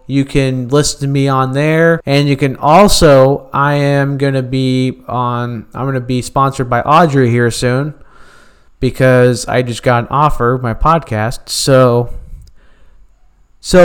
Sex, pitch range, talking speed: male, 120-150 Hz, 160 wpm